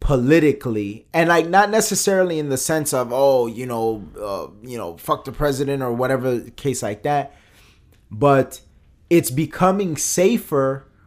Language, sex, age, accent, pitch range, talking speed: English, male, 30-49, American, 115-140 Hz, 145 wpm